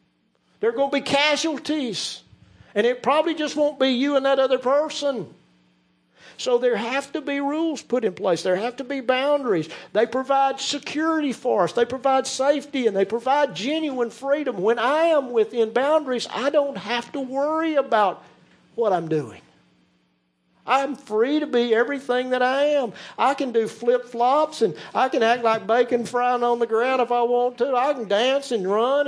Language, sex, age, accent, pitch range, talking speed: English, male, 50-69, American, 205-275 Hz, 185 wpm